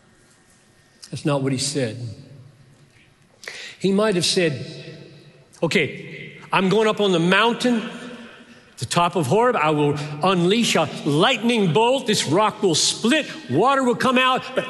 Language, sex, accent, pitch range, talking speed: English, male, American, 135-195 Hz, 145 wpm